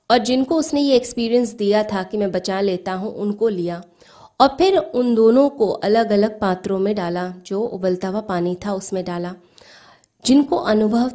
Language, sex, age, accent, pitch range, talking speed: Hindi, female, 20-39, native, 190-235 Hz, 180 wpm